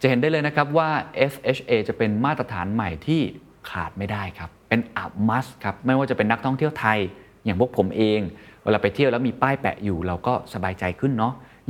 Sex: male